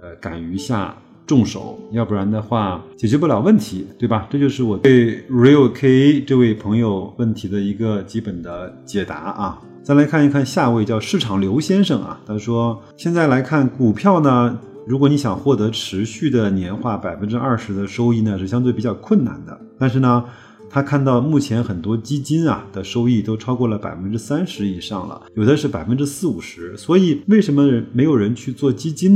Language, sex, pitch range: Chinese, male, 100-135 Hz